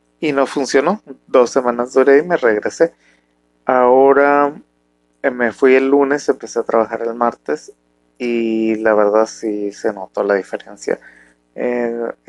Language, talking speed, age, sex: Spanish, 135 wpm, 30-49, male